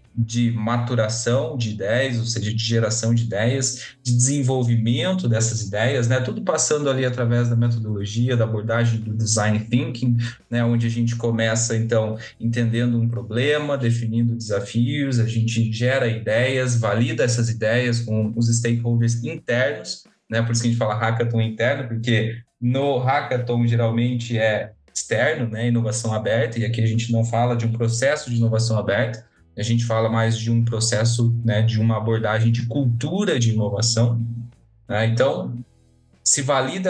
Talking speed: 160 wpm